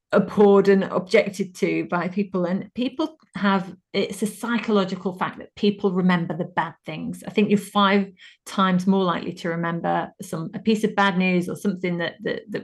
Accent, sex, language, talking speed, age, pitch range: British, female, English, 185 wpm, 40-59, 180-210 Hz